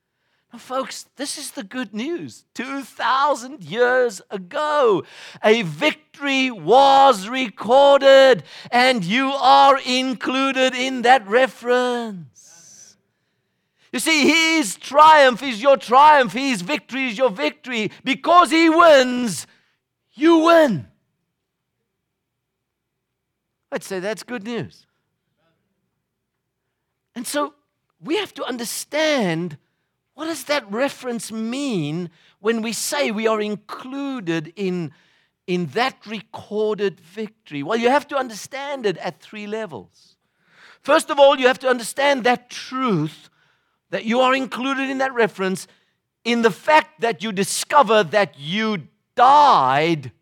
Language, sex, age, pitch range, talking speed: English, male, 50-69, 190-270 Hz, 115 wpm